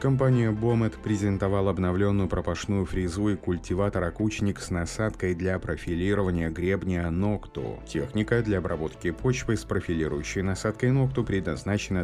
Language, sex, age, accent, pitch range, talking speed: Russian, male, 30-49, native, 80-100 Hz, 115 wpm